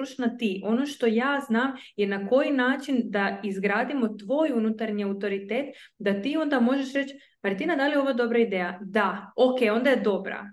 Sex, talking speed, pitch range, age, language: female, 175 wpm, 205-245 Hz, 20-39, Croatian